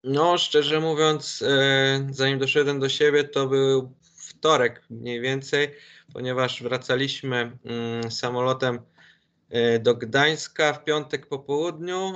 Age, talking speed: 20-39, 105 wpm